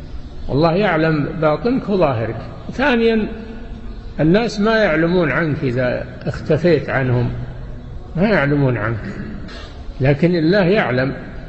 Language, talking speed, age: Arabic, 95 wpm, 60-79